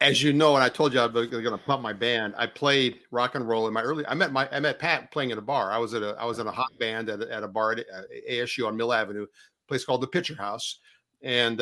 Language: English